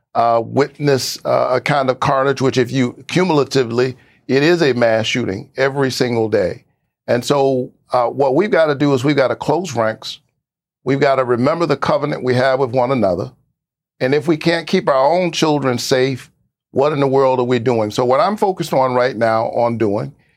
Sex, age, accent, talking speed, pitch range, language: male, 50-69, American, 205 wpm, 120-140 Hz, English